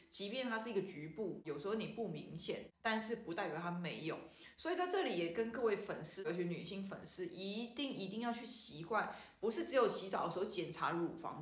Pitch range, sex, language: 175-230 Hz, female, Chinese